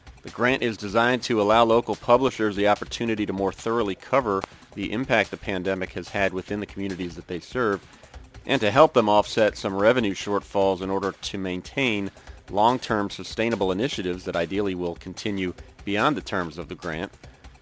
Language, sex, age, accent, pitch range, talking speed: English, male, 40-59, American, 95-115 Hz, 175 wpm